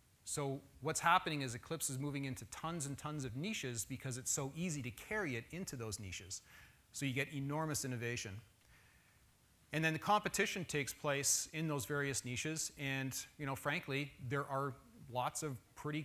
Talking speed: 175 wpm